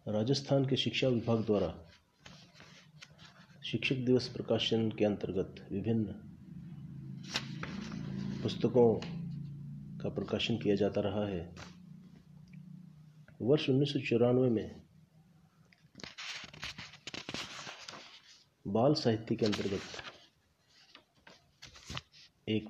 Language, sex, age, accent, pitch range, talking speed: Hindi, male, 30-49, native, 105-155 Hz, 70 wpm